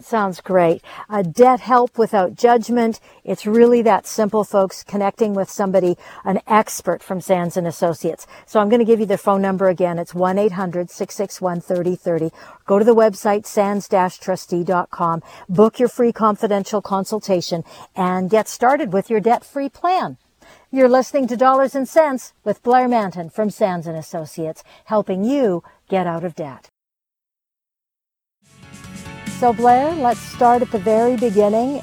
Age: 50-69